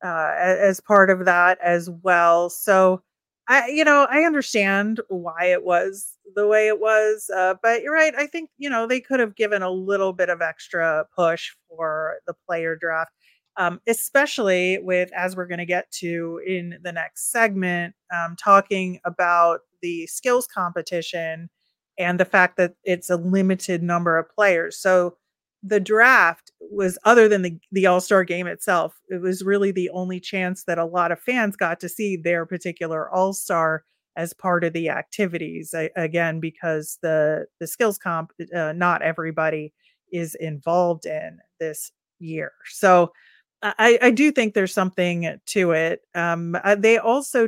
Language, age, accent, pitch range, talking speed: English, 30-49, American, 170-200 Hz, 165 wpm